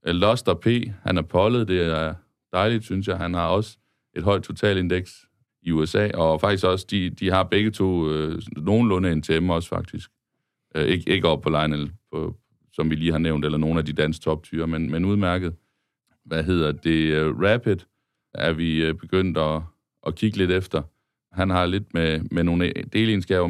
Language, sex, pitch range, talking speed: Danish, male, 80-100 Hz, 185 wpm